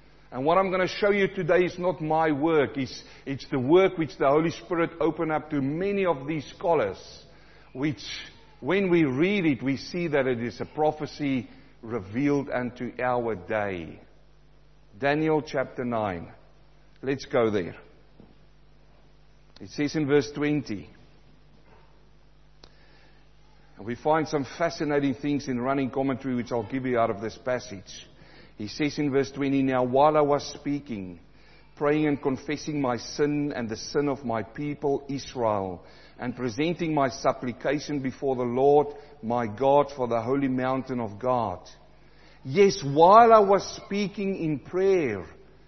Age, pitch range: 50-69, 125-165 Hz